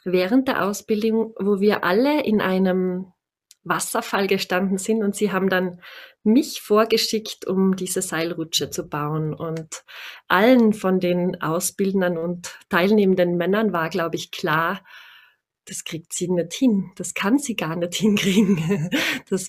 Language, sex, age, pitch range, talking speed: German, female, 20-39, 185-225 Hz, 140 wpm